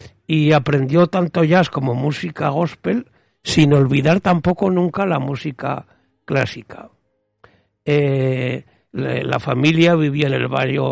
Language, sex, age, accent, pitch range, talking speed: Spanish, male, 60-79, Spanish, 130-160 Hz, 115 wpm